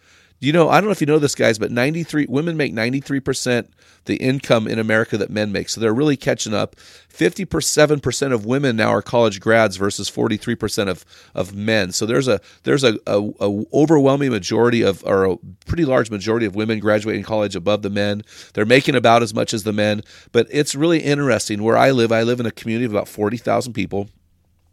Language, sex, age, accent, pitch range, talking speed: English, male, 40-59, American, 100-125 Hz, 215 wpm